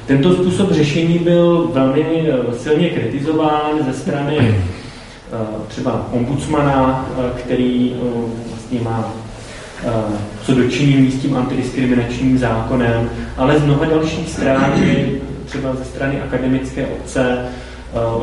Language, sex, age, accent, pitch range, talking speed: Czech, male, 30-49, native, 120-145 Hz, 115 wpm